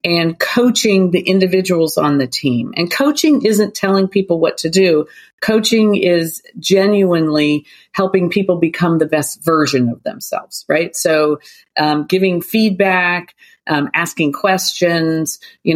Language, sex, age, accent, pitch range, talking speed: English, female, 40-59, American, 165-220 Hz, 135 wpm